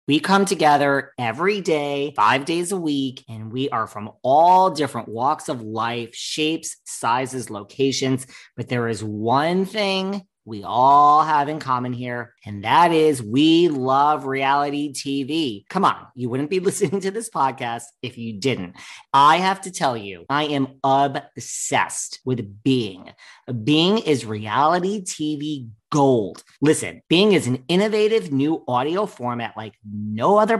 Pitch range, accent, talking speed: 120-170 Hz, American, 150 wpm